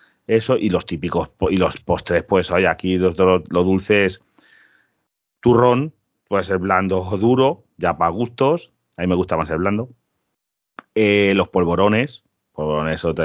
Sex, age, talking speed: male, 30-49, 160 wpm